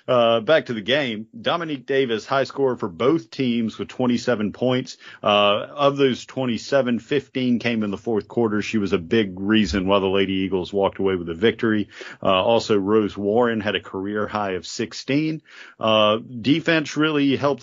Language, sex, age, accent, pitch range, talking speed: English, male, 40-59, American, 105-125 Hz, 180 wpm